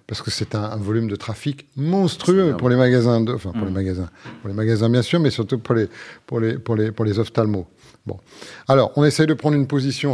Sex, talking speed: male, 255 wpm